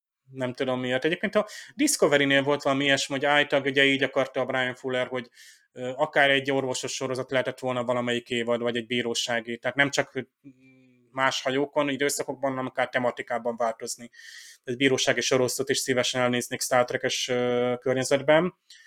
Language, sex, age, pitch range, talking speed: Hungarian, male, 20-39, 130-145 Hz, 155 wpm